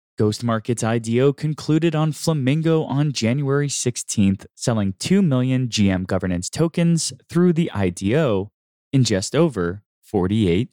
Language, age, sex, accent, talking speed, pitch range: English, 20-39, male, American, 125 wpm, 100-150 Hz